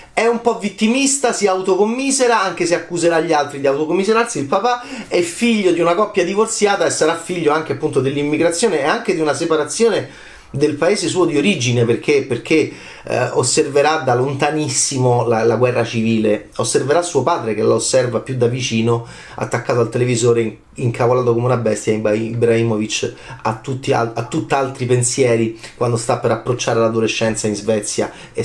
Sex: male